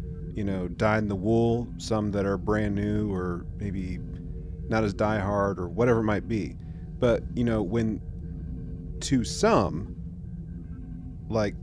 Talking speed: 145 wpm